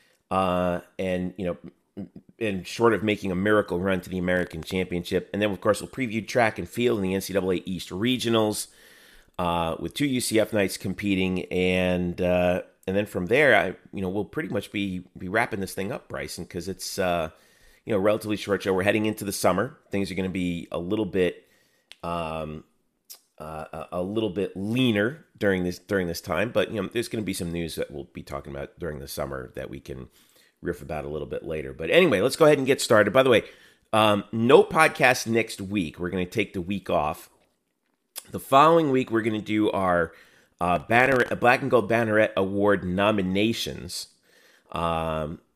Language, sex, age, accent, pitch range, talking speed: English, male, 30-49, American, 85-105 Hz, 205 wpm